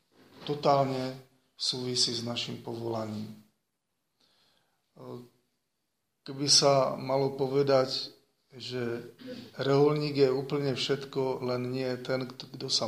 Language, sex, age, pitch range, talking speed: Slovak, male, 40-59, 120-135 Hz, 100 wpm